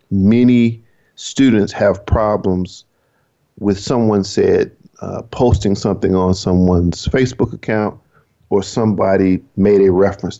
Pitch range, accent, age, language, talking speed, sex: 95-115 Hz, American, 50-69, English, 110 wpm, male